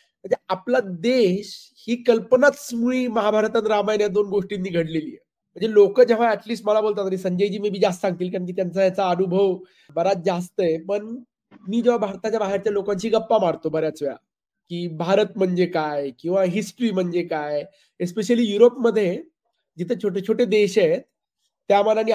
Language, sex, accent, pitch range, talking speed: Marathi, male, native, 190-235 Hz, 165 wpm